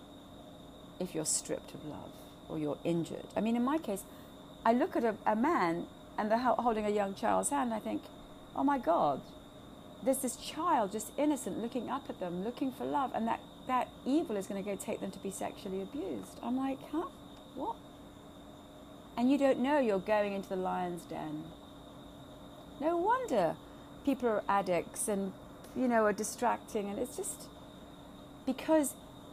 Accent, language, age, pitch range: British, English, 40-59, 200-285 Hz